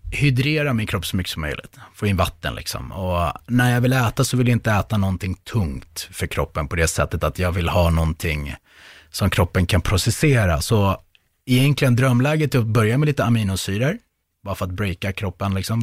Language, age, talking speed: Swedish, 30-49, 195 wpm